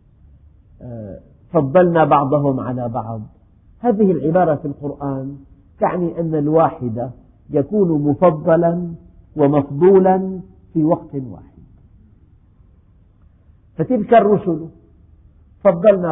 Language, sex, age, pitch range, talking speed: Arabic, male, 50-69, 100-170 Hz, 75 wpm